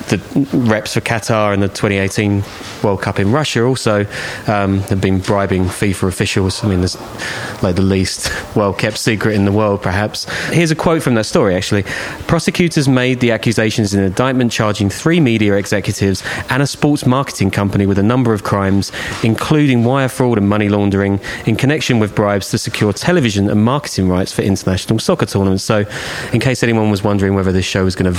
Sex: male